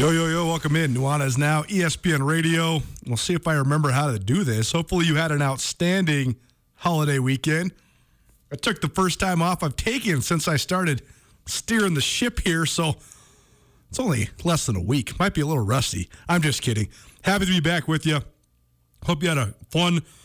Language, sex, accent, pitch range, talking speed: English, male, American, 125-160 Hz, 200 wpm